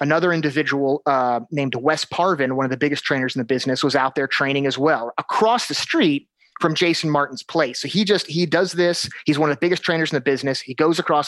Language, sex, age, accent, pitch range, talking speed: English, male, 30-49, American, 135-180 Hz, 240 wpm